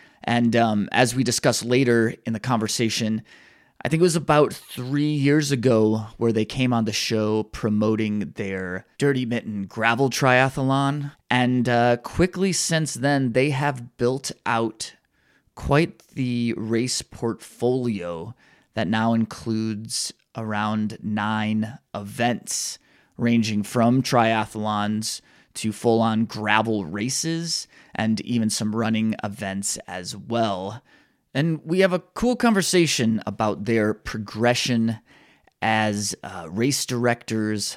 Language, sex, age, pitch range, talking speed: English, male, 20-39, 110-125 Hz, 120 wpm